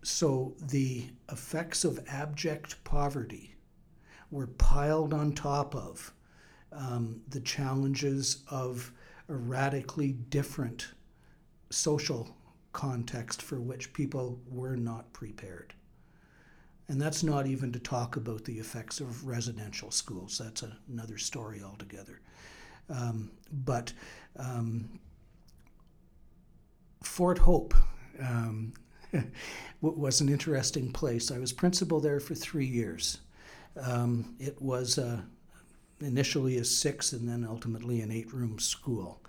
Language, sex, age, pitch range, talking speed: English, male, 60-79, 115-145 Hz, 110 wpm